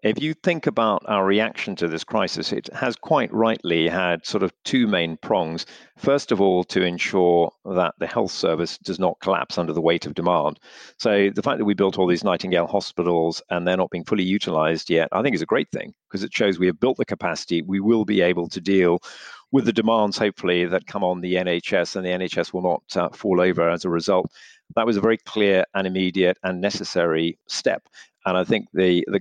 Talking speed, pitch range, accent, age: 220 wpm, 90-105 Hz, British, 50-69